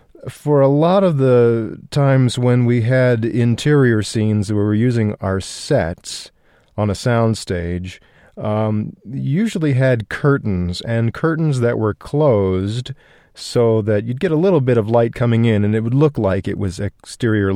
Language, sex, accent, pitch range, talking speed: English, male, American, 100-125 Hz, 165 wpm